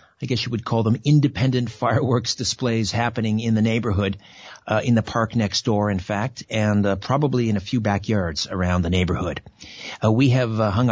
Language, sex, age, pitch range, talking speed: English, male, 60-79, 105-130 Hz, 200 wpm